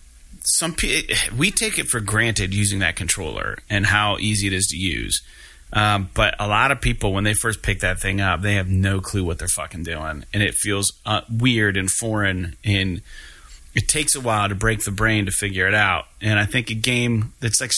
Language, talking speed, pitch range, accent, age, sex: English, 215 wpm, 95-115 Hz, American, 30-49, male